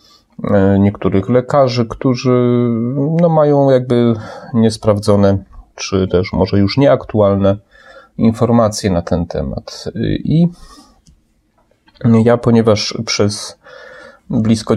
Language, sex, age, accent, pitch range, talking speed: Polish, male, 30-49, native, 105-120 Hz, 80 wpm